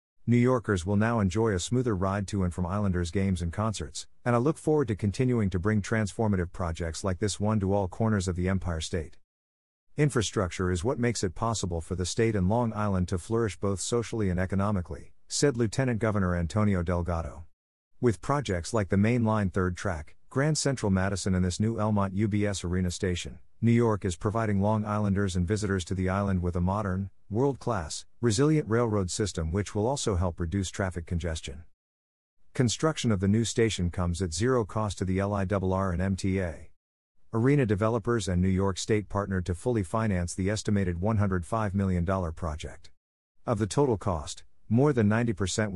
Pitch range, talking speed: 90-110 Hz, 180 wpm